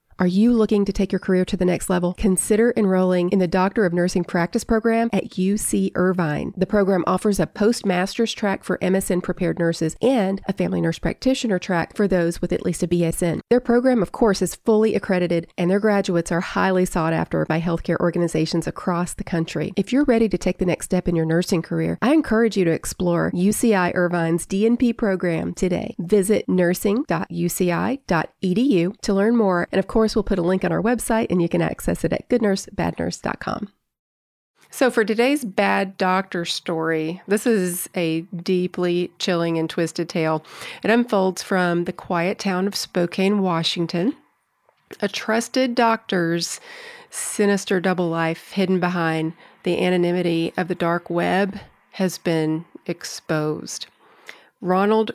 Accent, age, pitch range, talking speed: American, 30-49, 175-210 Hz, 165 wpm